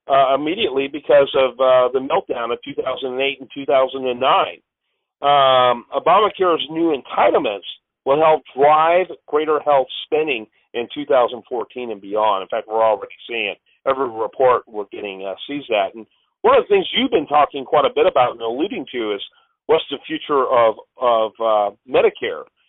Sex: male